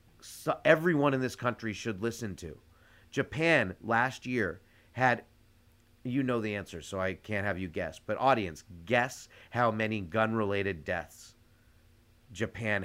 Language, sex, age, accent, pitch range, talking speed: English, male, 30-49, American, 105-130 Hz, 140 wpm